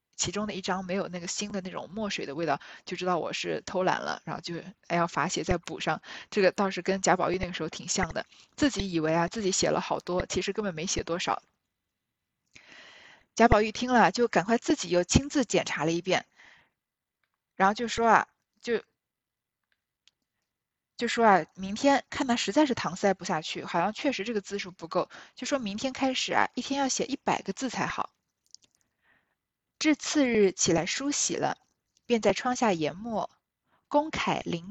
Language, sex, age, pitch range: Chinese, female, 20-39, 180-250 Hz